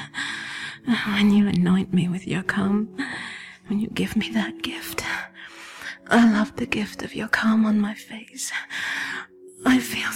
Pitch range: 210-270 Hz